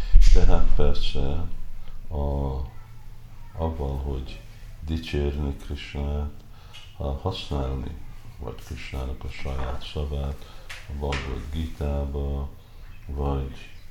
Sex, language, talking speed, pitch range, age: male, Hungarian, 80 wpm, 75-100 Hz, 50-69